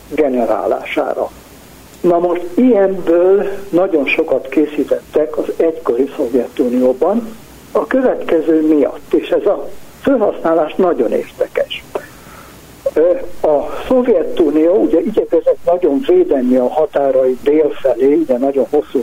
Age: 60-79